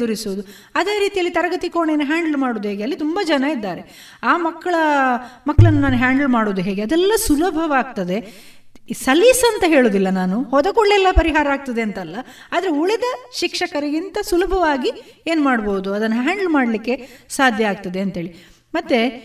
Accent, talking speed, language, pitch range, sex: native, 130 wpm, Kannada, 230-320 Hz, female